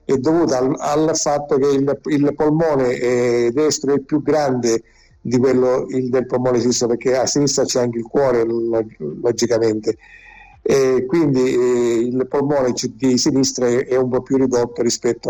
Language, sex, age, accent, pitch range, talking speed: Italian, male, 50-69, native, 125-145 Hz, 170 wpm